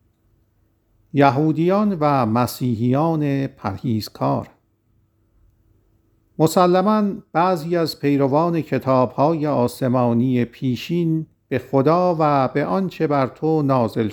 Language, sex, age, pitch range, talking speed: Persian, male, 50-69, 110-145 Hz, 80 wpm